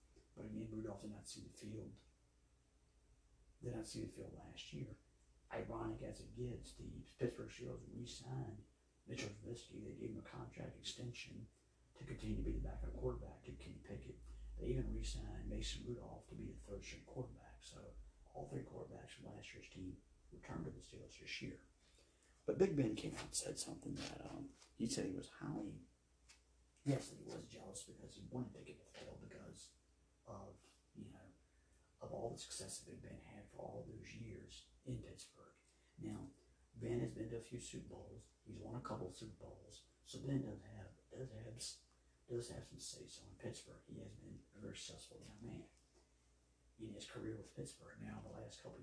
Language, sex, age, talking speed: English, male, 50-69, 195 wpm